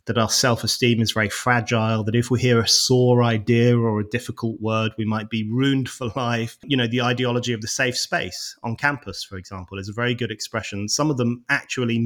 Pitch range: 110-135 Hz